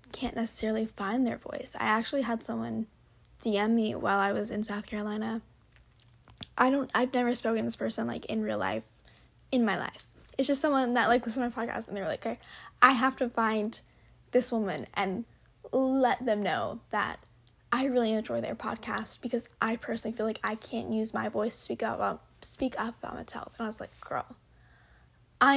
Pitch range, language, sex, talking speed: 215-265 Hz, English, female, 200 wpm